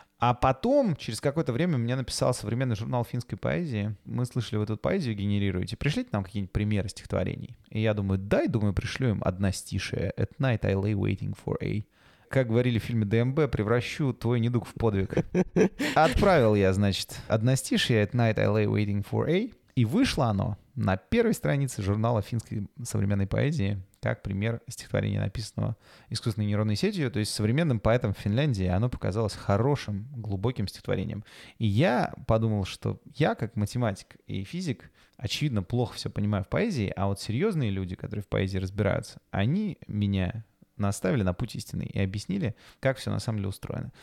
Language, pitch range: Russian, 100-125 Hz